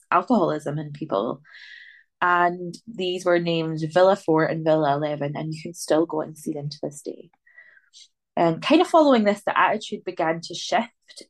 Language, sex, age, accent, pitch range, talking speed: English, female, 20-39, British, 155-185 Hz, 175 wpm